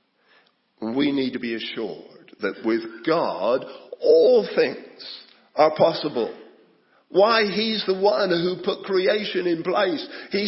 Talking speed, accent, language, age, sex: 125 wpm, British, English, 50-69, male